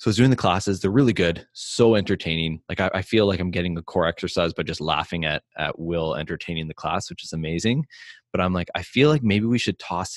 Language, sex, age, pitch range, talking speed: English, male, 20-39, 80-95 Hz, 255 wpm